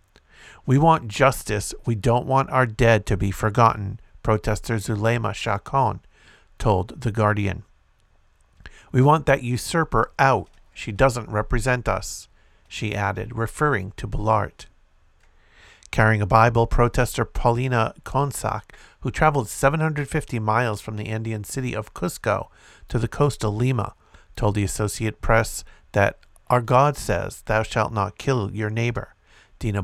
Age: 50-69